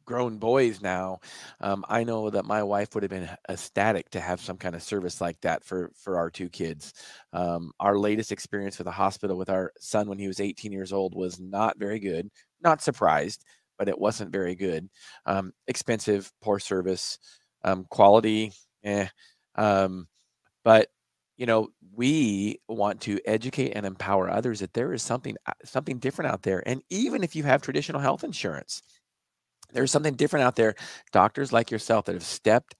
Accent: American